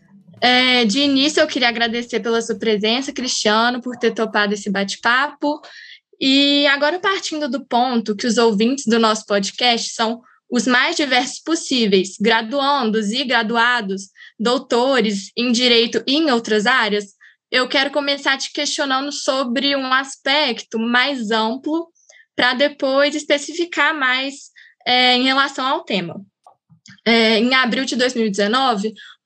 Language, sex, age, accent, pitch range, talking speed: Portuguese, female, 10-29, Brazilian, 230-290 Hz, 125 wpm